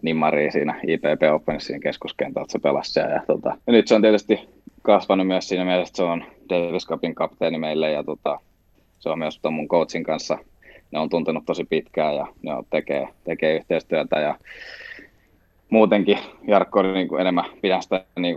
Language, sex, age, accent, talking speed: Finnish, male, 20-39, native, 180 wpm